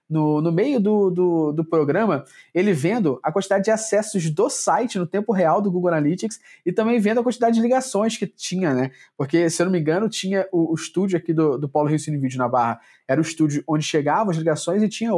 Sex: male